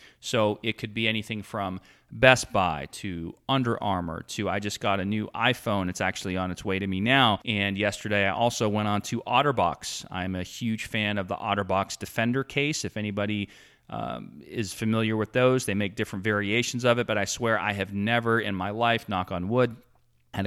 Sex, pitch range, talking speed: male, 100-125 Hz, 200 wpm